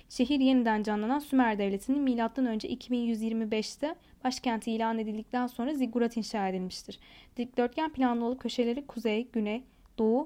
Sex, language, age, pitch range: female, Turkish, 10-29, 220-270 Hz